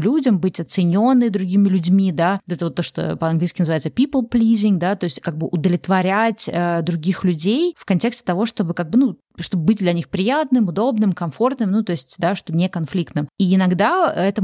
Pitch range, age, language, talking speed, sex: 175-210 Hz, 20-39, Russian, 195 wpm, female